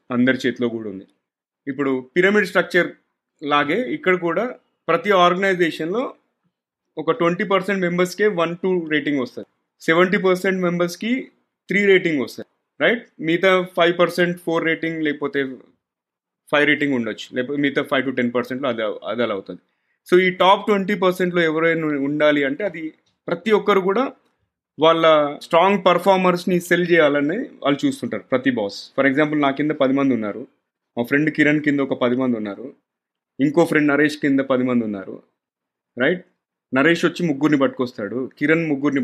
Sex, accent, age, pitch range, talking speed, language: male, native, 30-49, 135-180 Hz, 145 wpm, Telugu